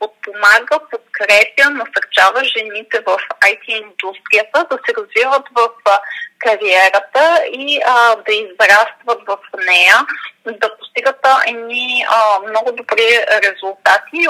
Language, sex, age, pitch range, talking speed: Bulgarian, female, 30-49, 205-270 Hz, 100 wpm